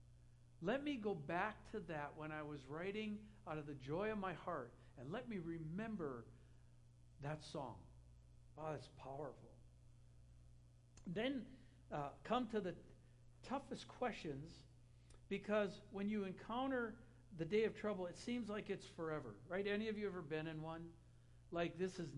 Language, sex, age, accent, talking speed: English, male, 60-79, American, 155 wpm